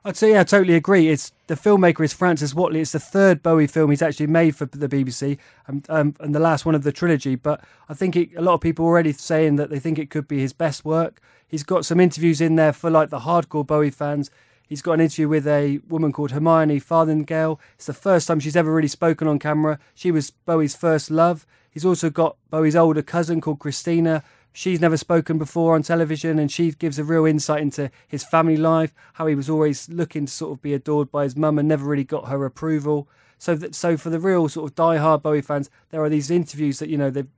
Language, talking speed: English, 240 wpm